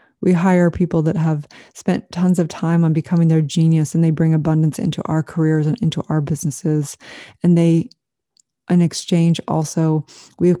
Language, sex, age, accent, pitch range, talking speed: English, female, 30-49, American, 160-175 Hz, 175 wpm